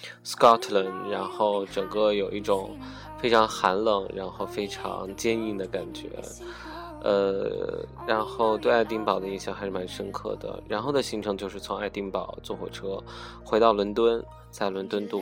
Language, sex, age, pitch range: Chinese, male, 20-39, 100-145 Hz